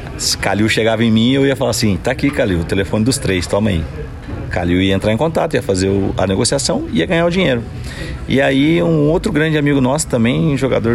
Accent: Brazilian